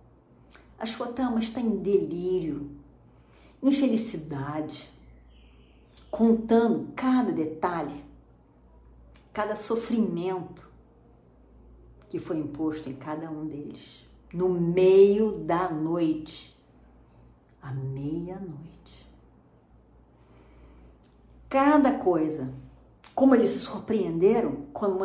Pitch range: 145-220 Hz